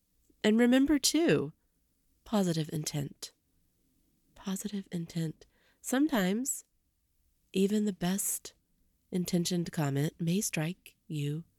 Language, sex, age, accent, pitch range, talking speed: English, female, 30-49, American, 140-200 Hz, 85 wpm